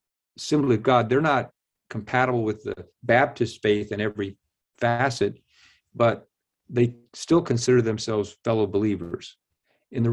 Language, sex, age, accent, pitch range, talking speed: English, male, 50-69, American, 100-120 Hz, 130 wpm